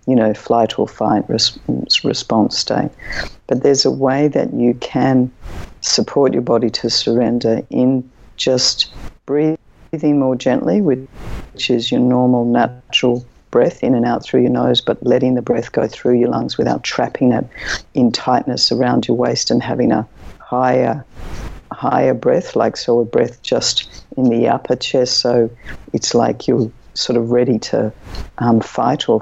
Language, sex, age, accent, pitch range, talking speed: English, female, 50-69, Australian, 120-135 Hz, 160 wpm